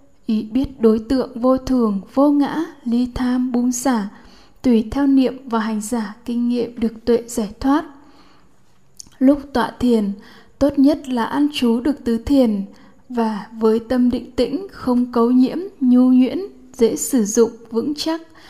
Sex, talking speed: female, 160 wpm